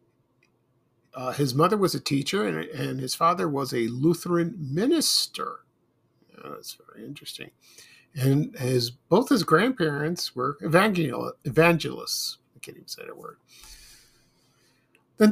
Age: 50-69